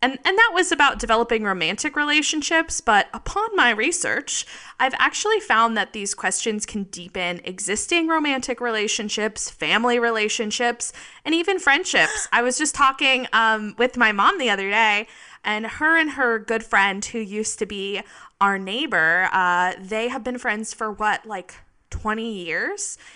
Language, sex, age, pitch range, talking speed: English, female, 20-39, 195-275 Hz, 160 wpm